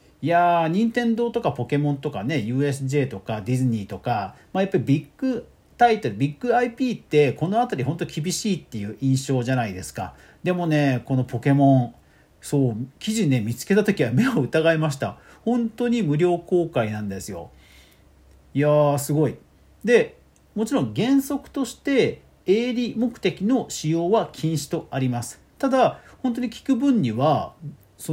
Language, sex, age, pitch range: Japanese, male, 40-59, 130-220 Hz